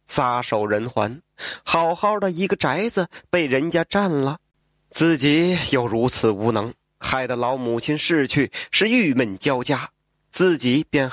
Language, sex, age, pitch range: Chinese, male, 20-39, 125-175 Hz